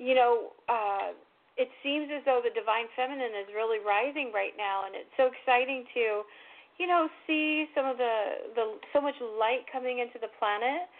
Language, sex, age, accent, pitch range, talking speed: English, female, 40-59, American, 220-265 Hz, 185 wpm